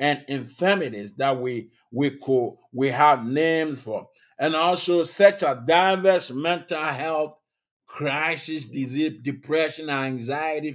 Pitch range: 130-170 Hz